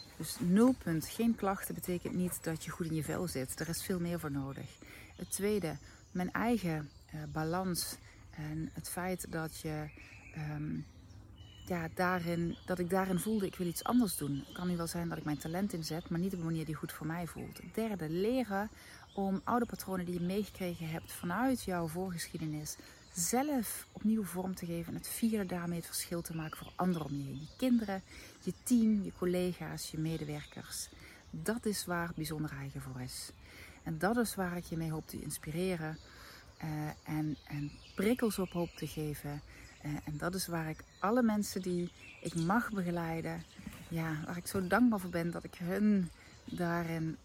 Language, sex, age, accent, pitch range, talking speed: Dutch, female, 40-59, Dutch, 150-190 Hz, 185 wpm